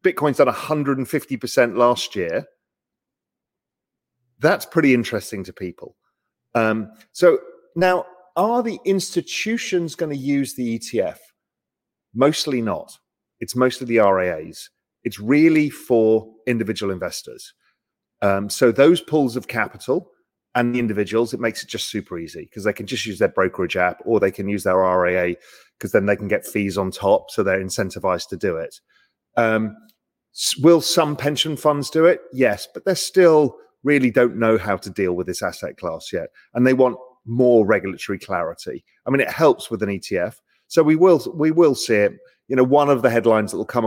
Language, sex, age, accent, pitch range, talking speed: English, male, 40-59, British, 105-150 Hz, 175 wpm